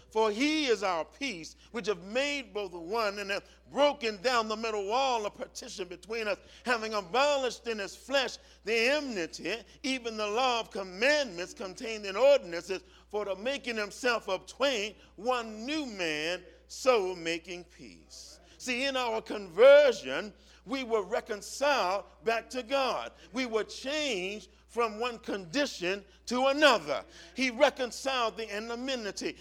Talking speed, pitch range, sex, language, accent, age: 140 wpm, 215-275 Hz, male, English, American, 50-69